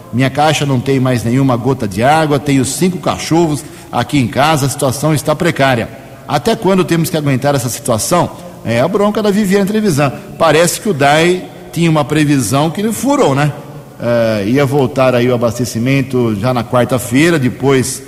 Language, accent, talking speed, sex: Portuguese, Brazilian, 175 wpm, male